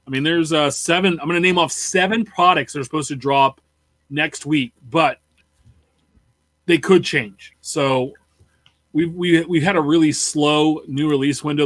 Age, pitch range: 30-49, 140-165 Hz